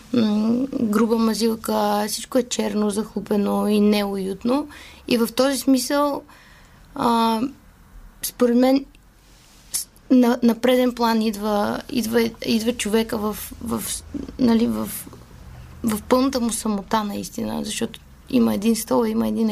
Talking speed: 115 wpm